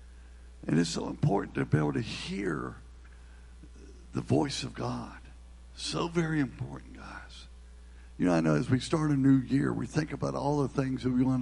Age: 60-79